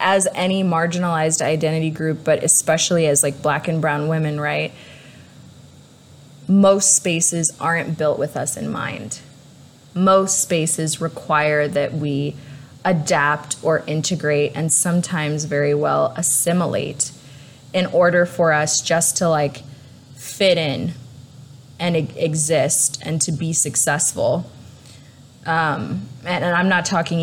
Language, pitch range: English, 140-175 Hz